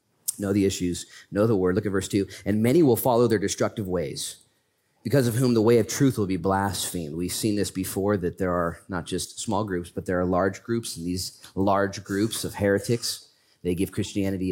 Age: 30-49